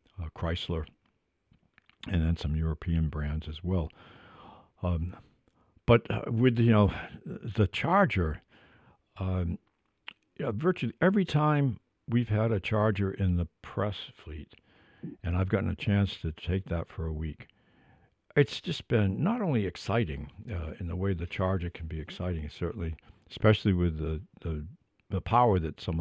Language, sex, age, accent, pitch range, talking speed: English, male, 60-79, American, 85-110 Hz, 150 wpm